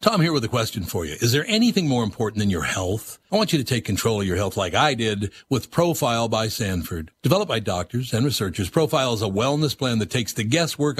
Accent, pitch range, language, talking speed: American, 100-135 Hz, English, 245 wpm